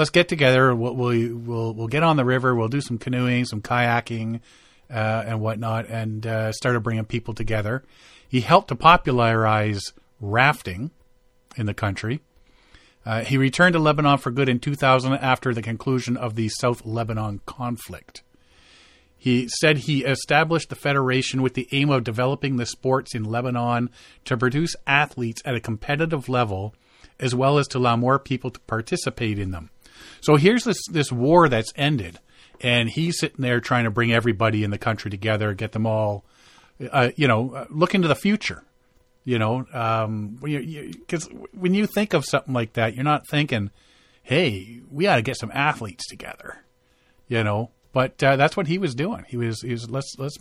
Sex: male